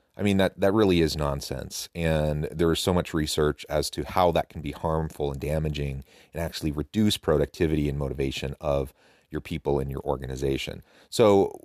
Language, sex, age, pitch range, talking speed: English, male, 30-49, 75-90 Hz, 180 wpm